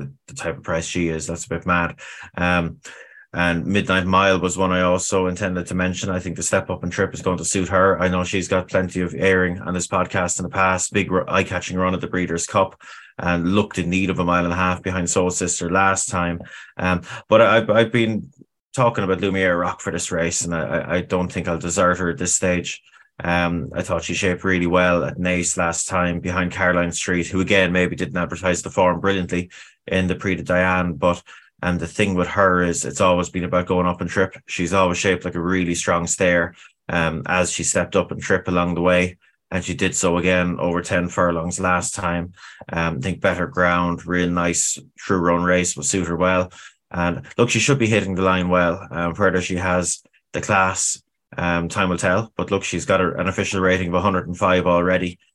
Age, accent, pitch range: 20-39, Irish, 85-95 Hz